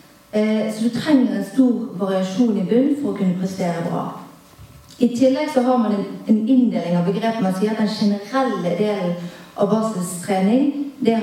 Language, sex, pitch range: English, female, 195-235 Hz